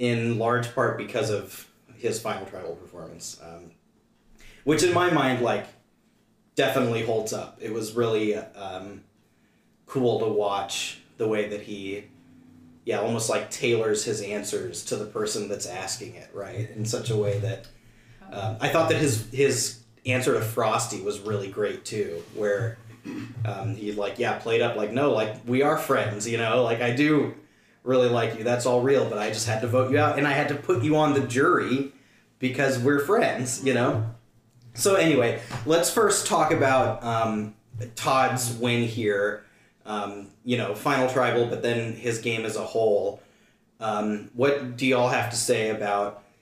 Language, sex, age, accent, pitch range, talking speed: English, male, 30-49, American, 105-130 Hz, 175 wpm